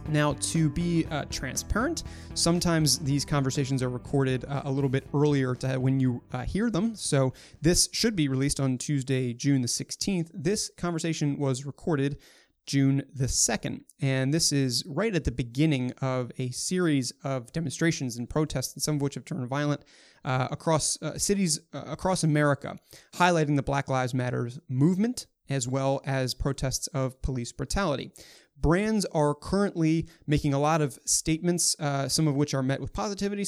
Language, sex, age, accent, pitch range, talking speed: English, male, 30-49, American, 135-165 Hz, 170 wpm